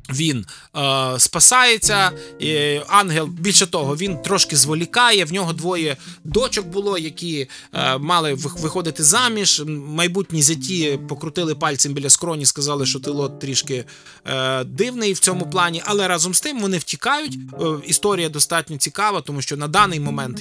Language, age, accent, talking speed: Ukrainian, 20-39, native, 145 wpm